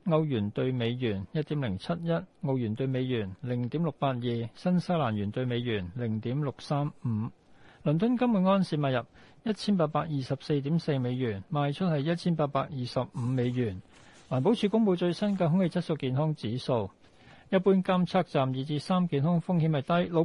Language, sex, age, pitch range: Chinese, male, 60-79, 125-180 Hz